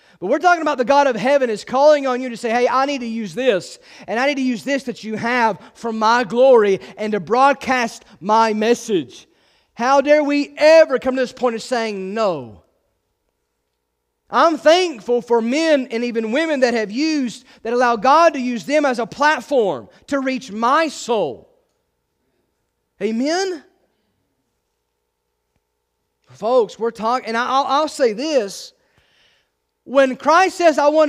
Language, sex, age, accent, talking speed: English, male, 30-49, American, 165 wpm